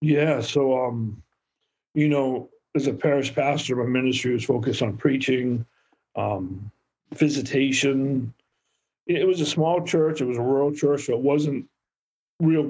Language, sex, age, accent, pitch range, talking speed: English, male, 50-69, American, 125-145 Hz, 145 wpm